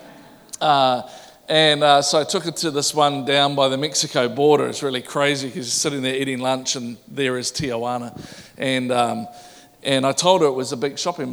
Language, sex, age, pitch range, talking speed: English, male, 40-59, 125-150 Hz, 205 wpm